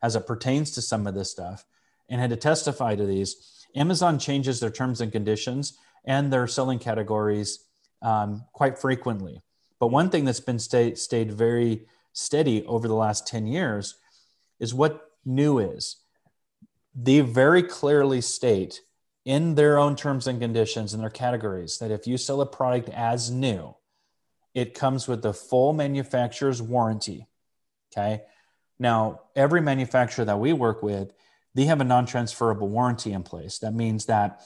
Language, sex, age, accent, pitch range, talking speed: English, male, 30-49, American, 105-130 Hz, 155 wpm